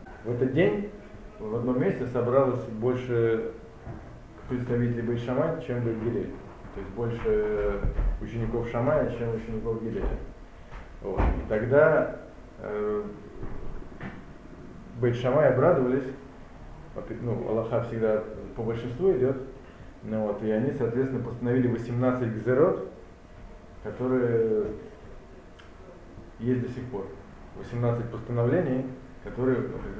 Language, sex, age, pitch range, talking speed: Russian, male, 20-39, 110-125 Hz, 95 wpm